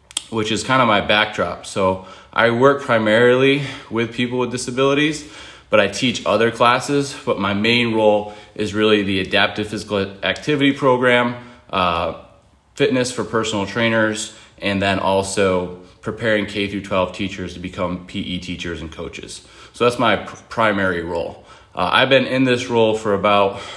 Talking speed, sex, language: 155 wpm, male, English